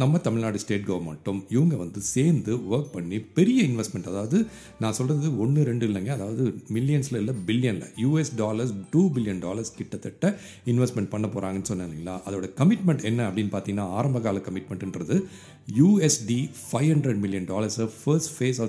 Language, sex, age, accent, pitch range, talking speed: Tamil, male, 40-59, native, 105-155 Hz, 55 wpm